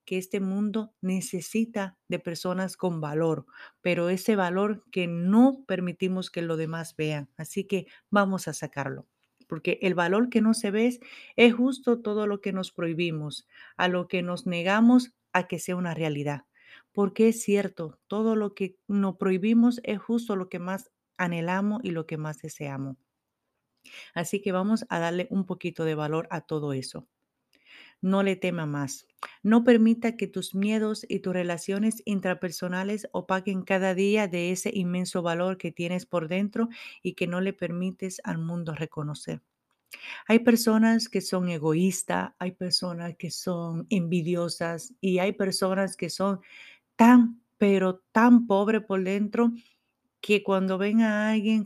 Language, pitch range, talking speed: Spanish, 175-210 Hz, 160 wpm